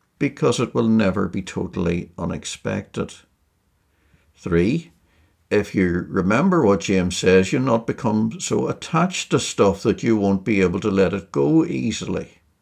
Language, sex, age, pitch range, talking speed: English, male, 60-79, 85-115 Hz, 145 wpm